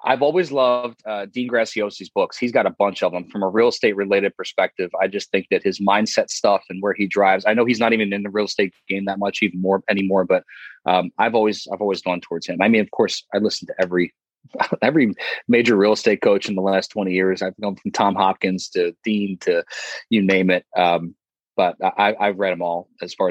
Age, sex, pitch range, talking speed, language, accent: 30-49, male, 95-110 Hz, 235 wpm, English, American